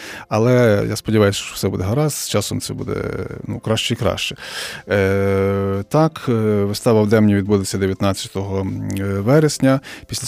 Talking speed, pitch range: 140 wpm, 100-125 Hz